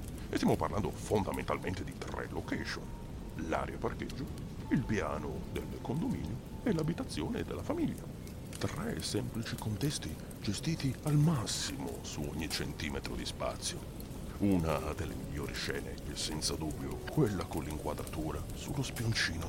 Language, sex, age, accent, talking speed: Italian, male, 50-69, native, 125 wpm